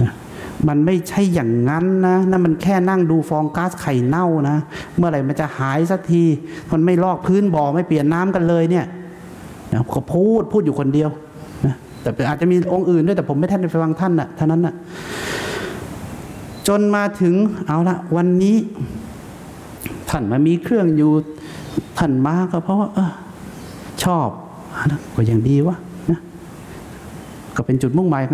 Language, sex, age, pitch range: English, male, 60-79, 150-185 Hz